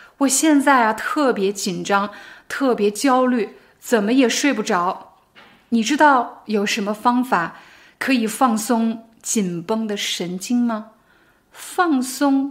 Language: Chinese